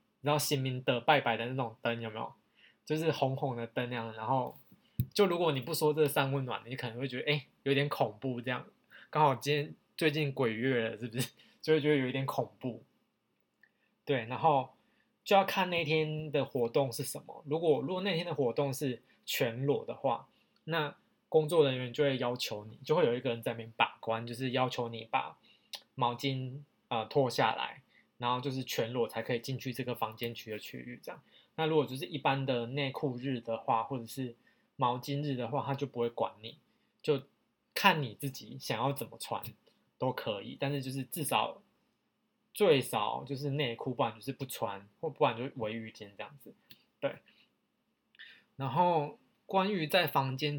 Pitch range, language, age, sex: 120-150 Hz, Chinese, 20-39, male